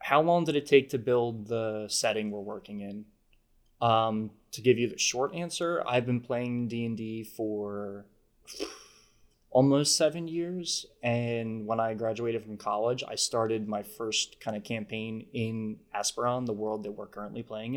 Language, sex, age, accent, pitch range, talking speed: English, male, 20-39, American, 105-125 Hz, 160 wpm